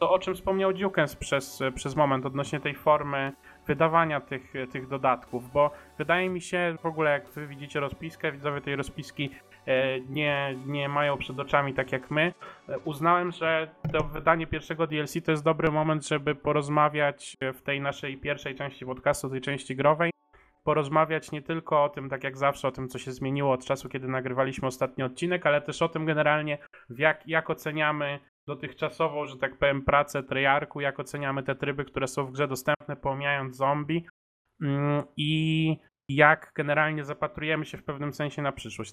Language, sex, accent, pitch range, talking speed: Polish, male, native, 135-155 Hz, 175 wpm